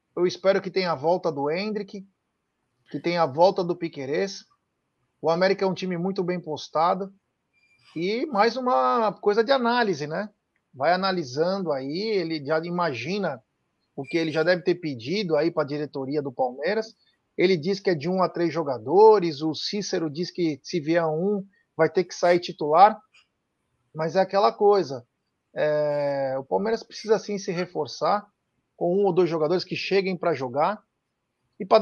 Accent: Brazilian